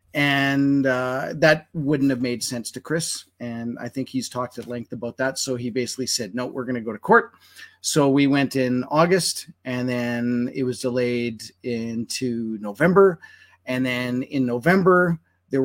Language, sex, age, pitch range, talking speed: English, male, 30-49, 120-155 Hz, 175 wpm